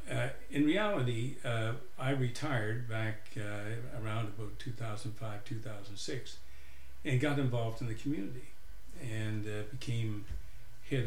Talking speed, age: 115 wpm, 60-79